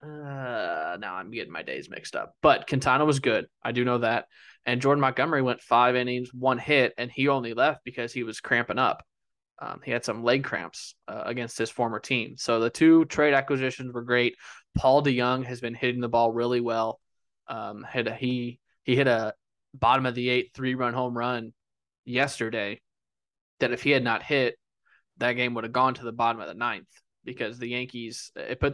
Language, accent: English, American